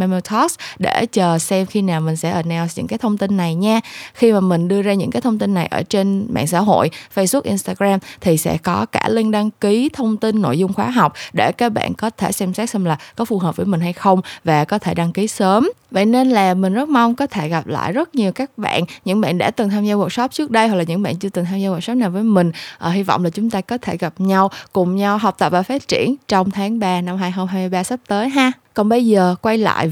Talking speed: 265 wpm